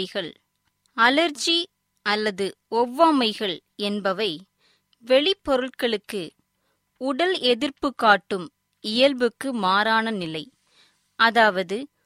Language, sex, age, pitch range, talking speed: Tamil, female, 20-39, 205-275 Hz, 60 wpm